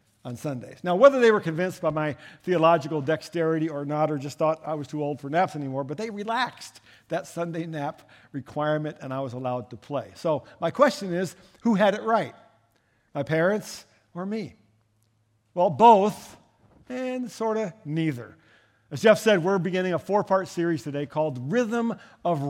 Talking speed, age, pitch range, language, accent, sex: 175 wpm, 50-69, 145-185 Hz, English, American, male